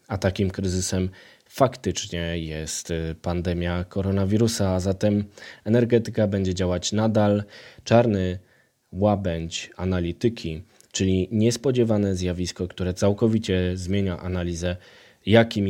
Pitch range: 90-105 Hz